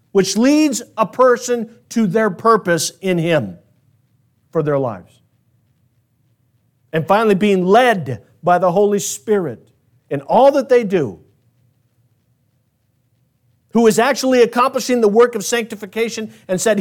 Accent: American